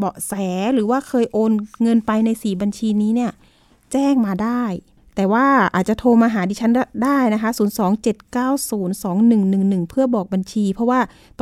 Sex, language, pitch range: female, Thai, 195-245 Hz